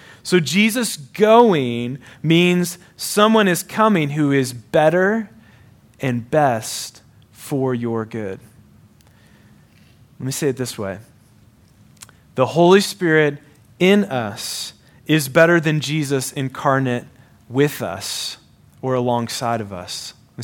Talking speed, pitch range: 110 wpm, 130-180 Hz